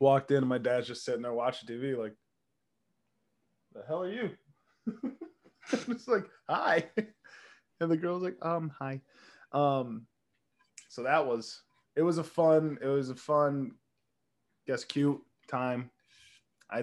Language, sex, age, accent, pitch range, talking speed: English, male, 20-39, American, 115-150 Hz, 145 wpm